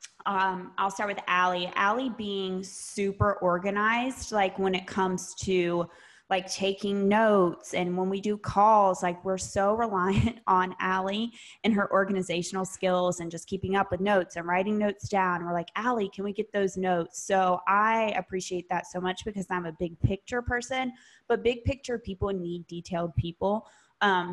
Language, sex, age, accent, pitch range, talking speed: English, female, 20-39, American, 175-205 Hz, 175 wpm